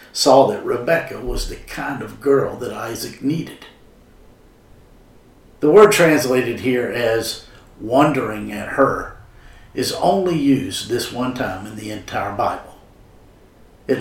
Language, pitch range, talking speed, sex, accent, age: English, 105-140 Hz, 130 wpm, male, American, 50-69